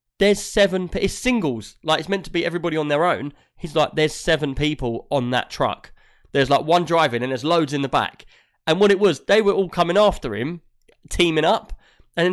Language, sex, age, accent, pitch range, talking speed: English, male, 20-39, British, 130-170 Hz, 215 wpm